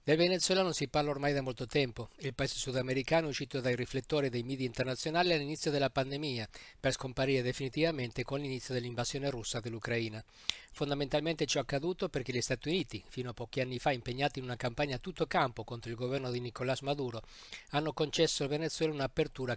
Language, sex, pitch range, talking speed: Italian, male, 125-150 Hz, 185 wpm